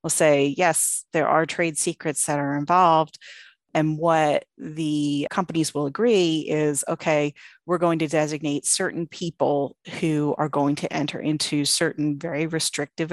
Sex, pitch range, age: female, 145-170 Hz, 30-49